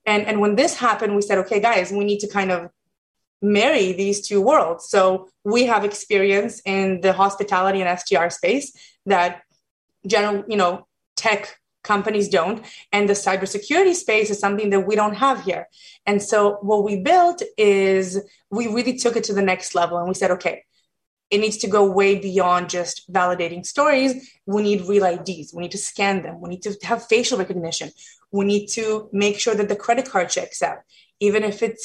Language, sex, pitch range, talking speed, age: English, female, 190-220 Hz, 190 wpm, 20-39